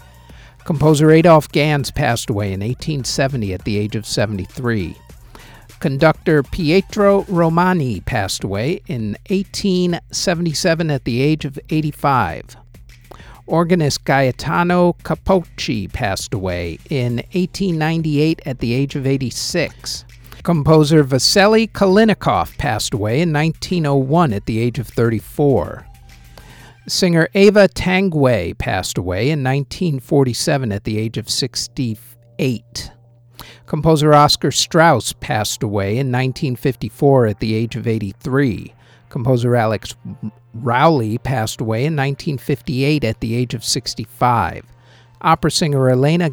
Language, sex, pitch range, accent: English, male, 115-155 Hz, American